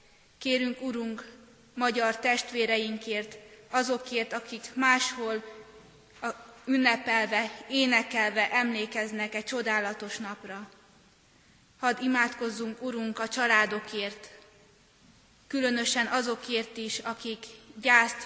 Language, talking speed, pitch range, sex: Hungarian, 75 wpm, 215-245 Hz, female